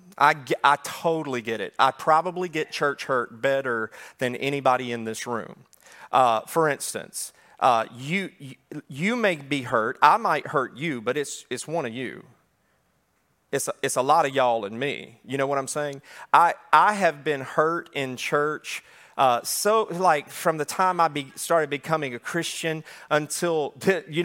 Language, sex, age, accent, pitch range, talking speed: English, male, 40-59, American, 145-195 Hz, 175 wpm